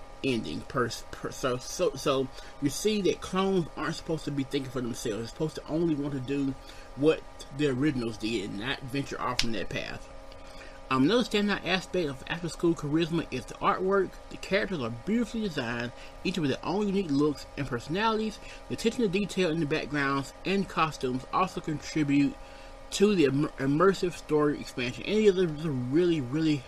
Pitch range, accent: 130-190 Hz, American